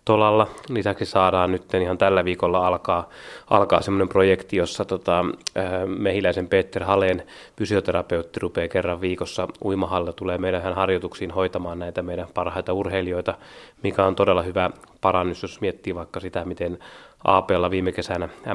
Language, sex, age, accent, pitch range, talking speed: Finnish, male, 20-39, native, 90-100 Hz, 135 wpm